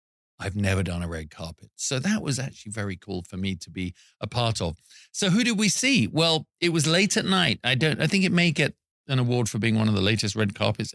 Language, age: English, 40-59